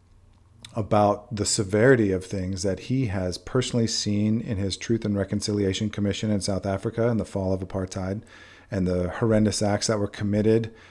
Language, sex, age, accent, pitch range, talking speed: English, male, 40-59, American, 95-115 Hz, 170 wpm